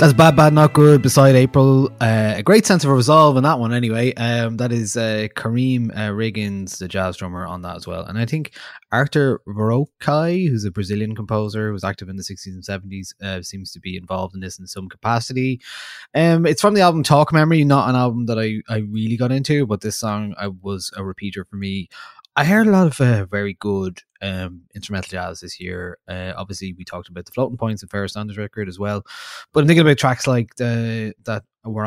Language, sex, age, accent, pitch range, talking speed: English, male, 20-39, Irish, 95-125 Hz, 220 wpm